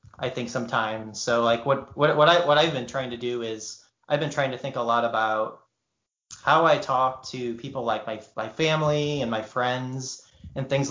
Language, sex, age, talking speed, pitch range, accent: English, male, 30-49, 210 wpm, 115-135 Hz, American